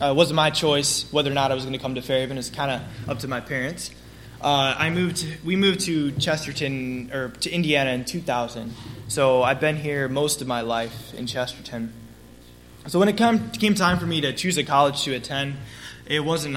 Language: English